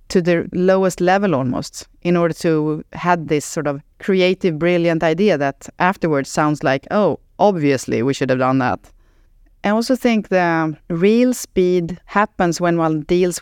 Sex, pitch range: female, 150-200 Hz